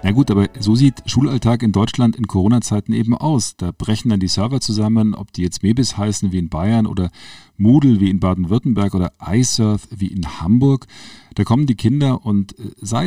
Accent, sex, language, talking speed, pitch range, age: German, male, German, 195 wpm, 95-115 Hz, 50-69